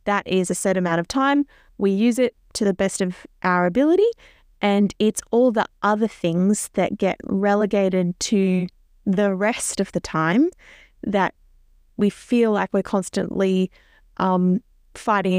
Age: 20-39